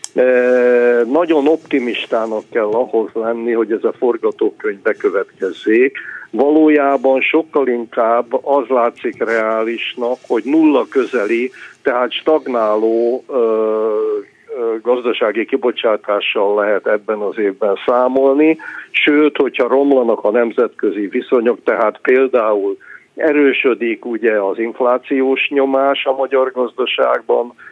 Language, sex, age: Hungarian, male, 50-69